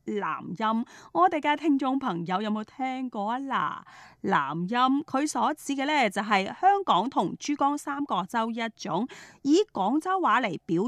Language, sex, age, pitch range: Chinese, female, 30-49, 195-285 Hz